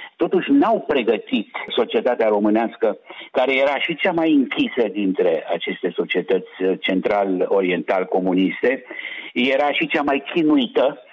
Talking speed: 115 wpm